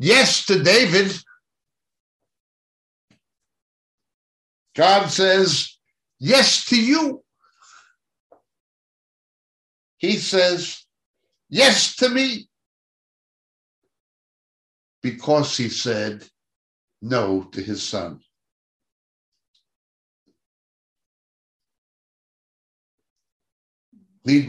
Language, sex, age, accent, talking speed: English, male, 60-79, American, 50 wpm